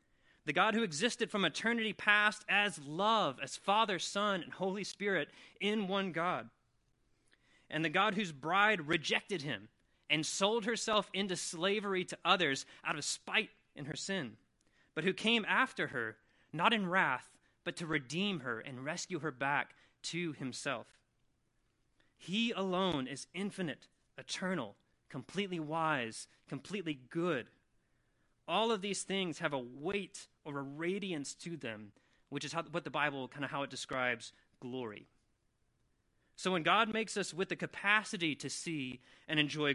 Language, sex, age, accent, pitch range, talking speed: English, male, 30-49, American, 150-205 Hz, 150 wpm